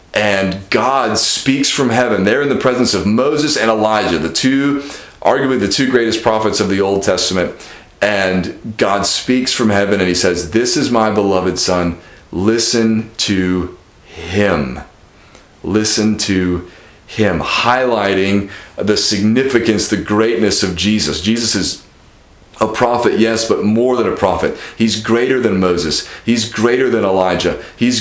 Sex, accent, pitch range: male, American, 100-120 Hz